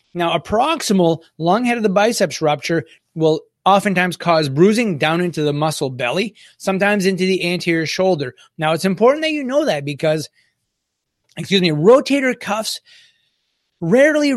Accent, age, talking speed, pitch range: American, 30-49, 150 wpm, 155-200 Hz